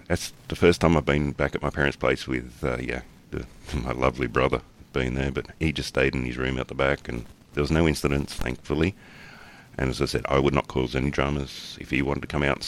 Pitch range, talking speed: 65-75 Hz, 245 wpm